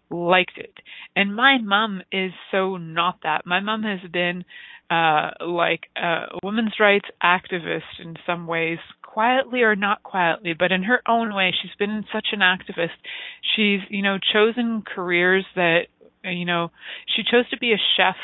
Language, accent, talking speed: English, American, 165 wpm